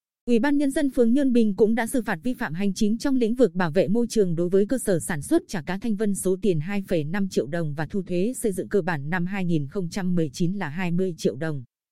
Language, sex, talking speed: Vietnamese, female, 250 wpm